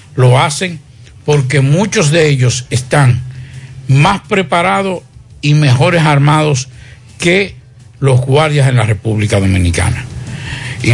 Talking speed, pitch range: 110 wpm, 125-155 Hz